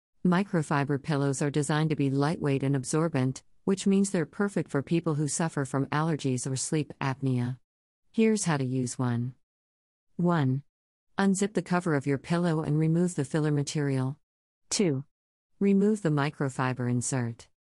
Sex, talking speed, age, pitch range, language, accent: female, 150 wpm, 50-69, 130-165 Hz, English, American